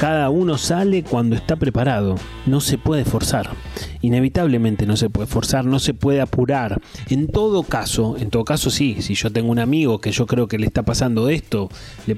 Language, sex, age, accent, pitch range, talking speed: Spanish, male, 30-49, Argentinian, 110-140 Hz, 195 wpm